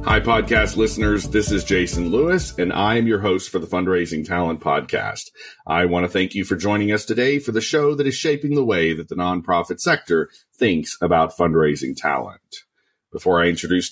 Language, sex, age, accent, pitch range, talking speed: English, male, 40-59, American, 90-135 Hz, 195 wpm